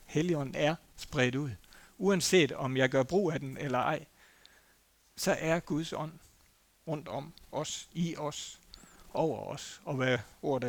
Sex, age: male, 60-79